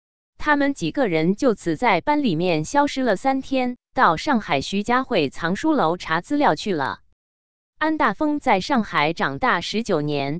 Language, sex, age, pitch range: Chinese, female, 20-39, 165-260 Hz